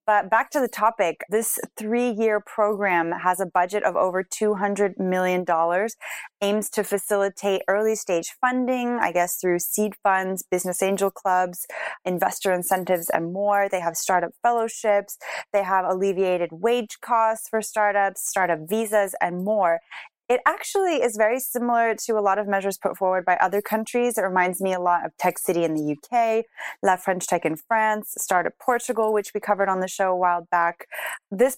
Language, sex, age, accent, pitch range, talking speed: English, female, 20-39, American, 180-220 Hz, 170 wpm